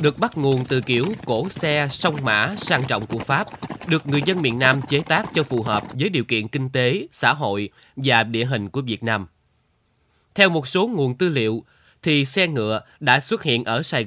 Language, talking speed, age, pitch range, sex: Vietnamese, 215 wpm, 20-39, 115-155 Hz, male